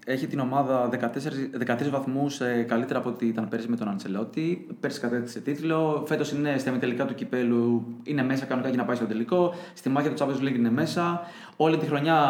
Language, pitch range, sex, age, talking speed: Greek, 130-155 Hz, male, 20-39, 205 wpm